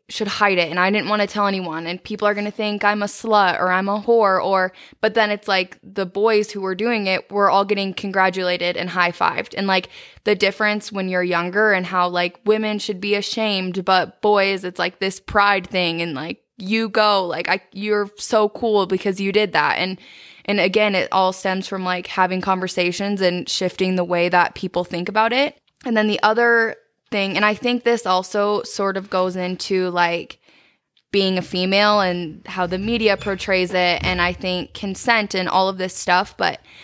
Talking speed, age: 210 wpm, 20-39